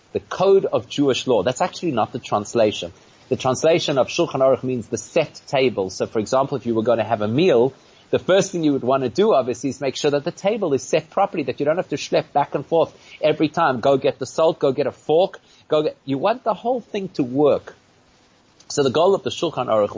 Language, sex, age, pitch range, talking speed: English, male, 30-49, 110-150 Hz, 250 wpm